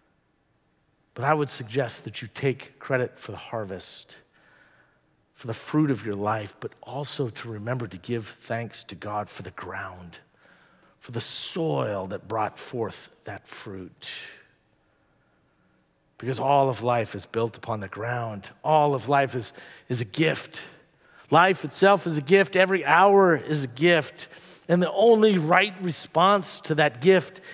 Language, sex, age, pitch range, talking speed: English, male, 50-69, 125-170 Hz, 155 wpm